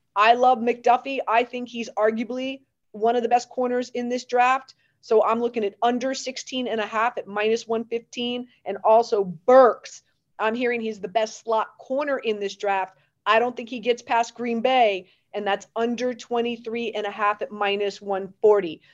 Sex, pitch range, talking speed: female, 220-255 Hz, 185 wpm